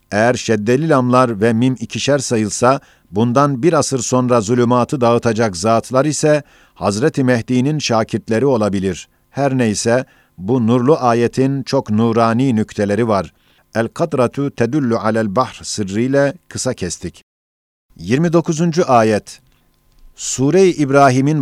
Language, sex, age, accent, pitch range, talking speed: Turkish, male, 50-69, native, 115-140 Hz, 115 wpm